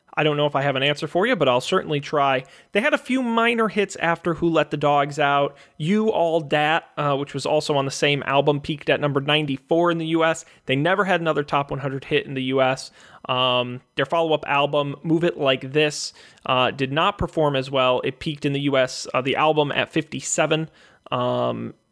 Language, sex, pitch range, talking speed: English, male, 135-170 Hz, 215 wpm